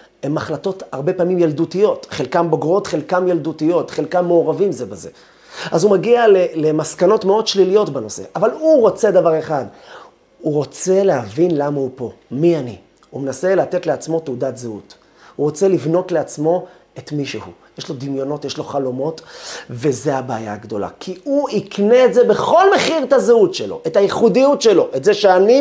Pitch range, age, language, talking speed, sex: 140-200 Hz, 30-49, Hebrew, 165 wpm, male